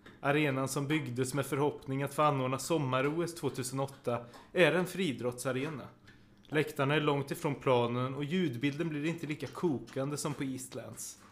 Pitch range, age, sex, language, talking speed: 120-160 Hz, 30-49, male, Swedish, 145 wpm